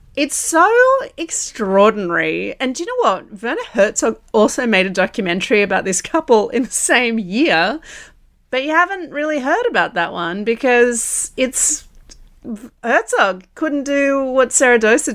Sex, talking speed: female, 145 wpm